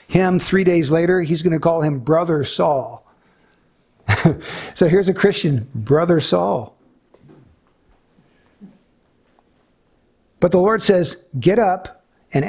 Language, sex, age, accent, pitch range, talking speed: English, male, 60-79, American, 140-185 Hz, 115 wpm